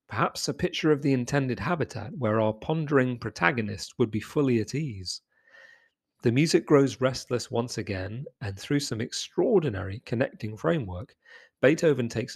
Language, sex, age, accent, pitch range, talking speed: English, male, 40-59, British, 105-140 Hz, 145 wpm